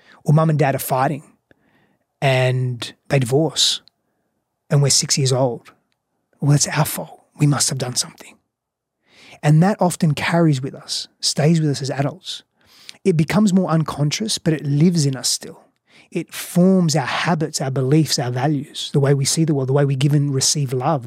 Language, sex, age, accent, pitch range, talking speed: English, male, 30-49, Australian, 135-160 Hz, 185 wpm